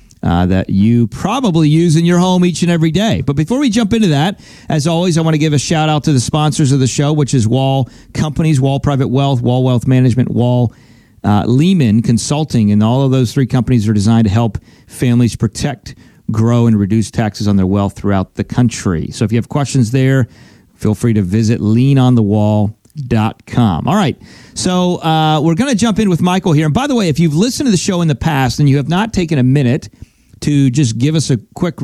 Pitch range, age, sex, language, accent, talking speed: 125-175 Hz, 40-59, male, English, American, 220 wpm